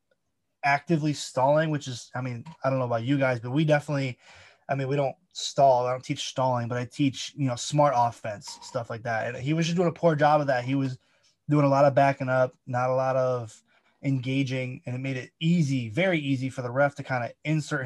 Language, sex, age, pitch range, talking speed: English, male, 20-39, 125-145 Hz, 240 wpm